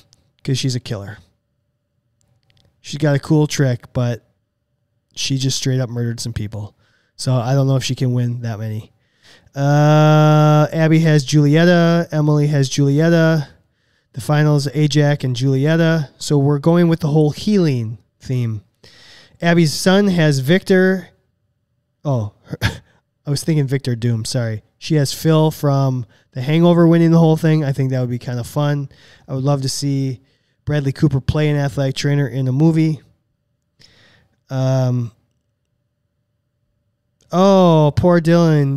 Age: 20-39